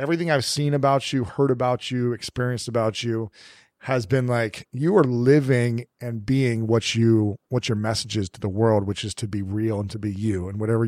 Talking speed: 215 wpm